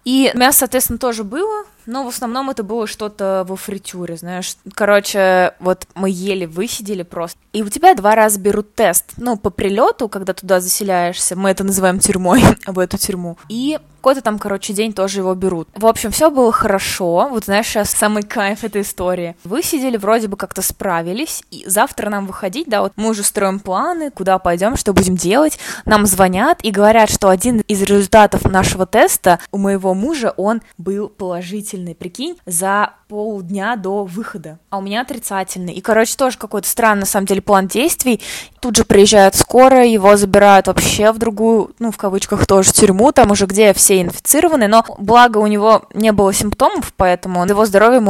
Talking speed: 180 wpm